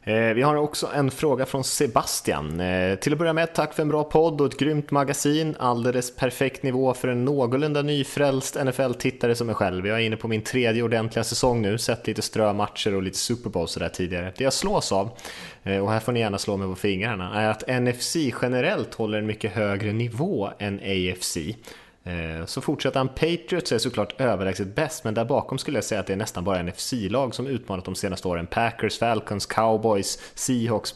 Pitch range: 100-130 Hz